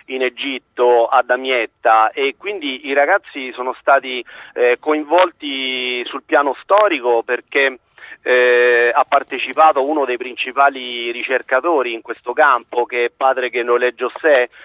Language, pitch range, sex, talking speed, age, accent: Italian, 120-135 Hz, male, 130 wpm, 40-59, native